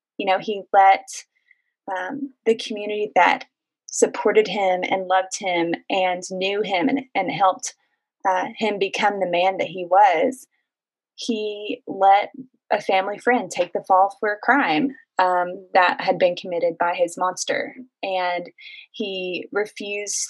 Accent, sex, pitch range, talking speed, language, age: American, female, 185-255 Hz, 145 wpm, English, 20-39